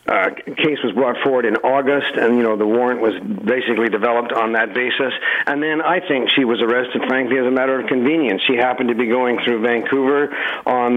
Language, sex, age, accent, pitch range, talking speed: English, male, 60-79, American, 120-140 Hz, 220 wpm